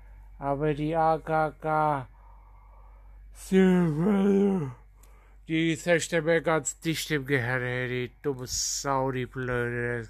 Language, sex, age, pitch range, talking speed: German, male, 60-79, 125-170 Hz, 95 wpm